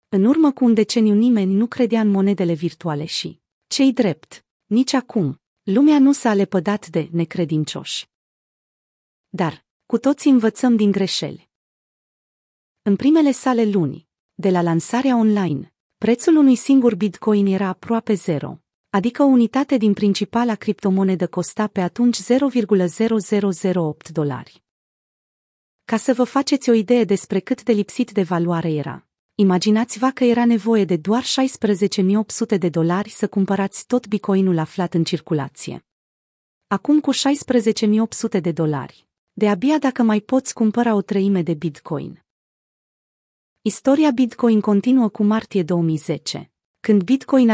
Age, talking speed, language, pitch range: 30-49, 135 wpm, Romanian, 180-240 Hz